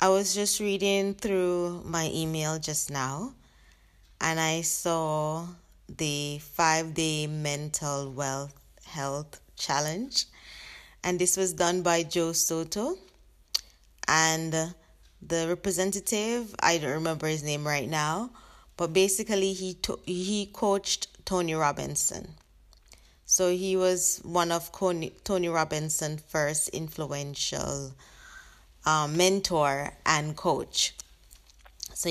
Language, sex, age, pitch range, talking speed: English, female, 20-39, 140-180 Hz, 110 wpm